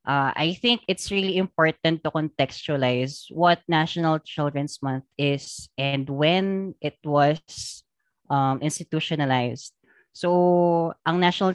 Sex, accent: female, native